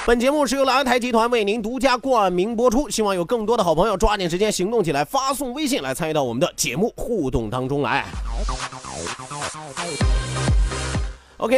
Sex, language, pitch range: male, Chinese, 175-240 Hz